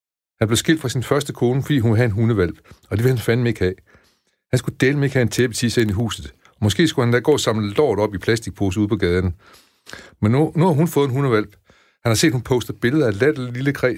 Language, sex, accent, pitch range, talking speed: Danish, male, native, 95-130 Hz, 270 wpm